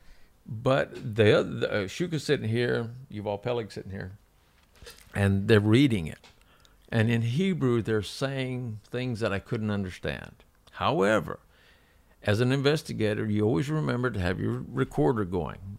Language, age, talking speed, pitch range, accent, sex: English, 50-69, 135 wpm, 100-125 Hz, American, male